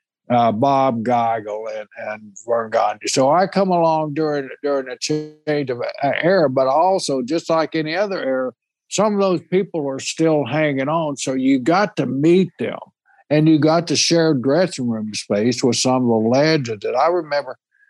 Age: 60-79